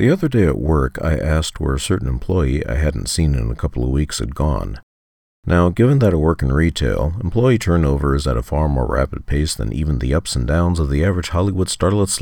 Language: English